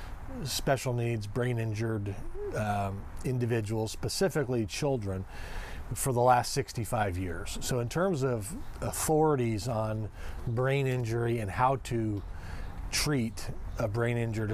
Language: English